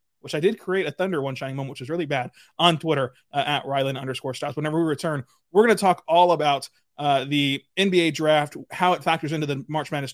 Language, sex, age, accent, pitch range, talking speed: English, male, 30-49, American, 145-180 Hz, 235 wpm